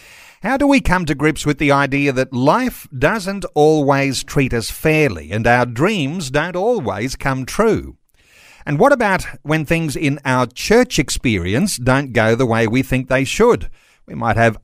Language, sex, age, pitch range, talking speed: English, male, 50-69, 130-170 Hz, 175 wpm